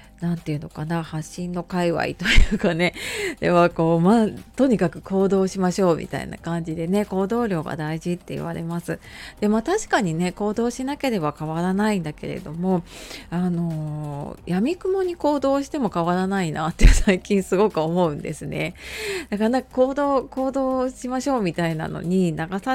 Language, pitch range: Japanese, 170-255 Hz